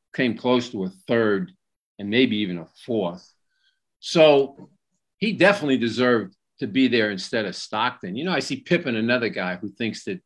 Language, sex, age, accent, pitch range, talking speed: English, male, 50-69, American, 110-170 Hz, 175 wpm